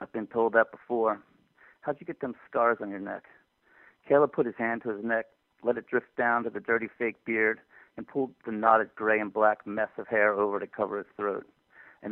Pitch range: 110-125 Hz